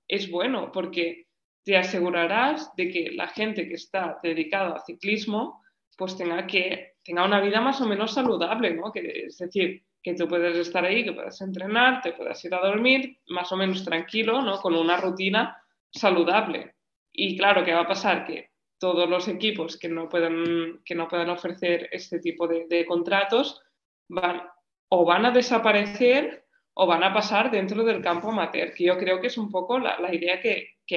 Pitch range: 175-215 Hz